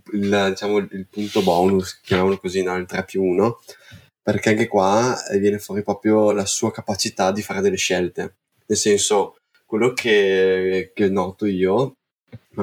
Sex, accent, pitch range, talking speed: male, native, 100-115 Hz, 160 wpm